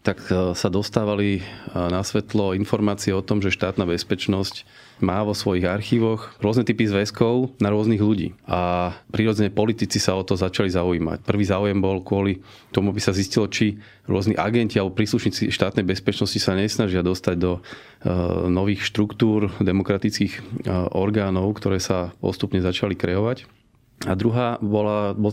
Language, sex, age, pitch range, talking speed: Slovak, male, 30-49, 95-110 Hz, 145 wpm